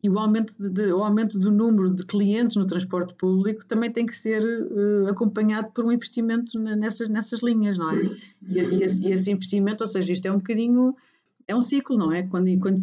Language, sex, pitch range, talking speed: Portuguese, female, 185-235 Hz, 220 wpm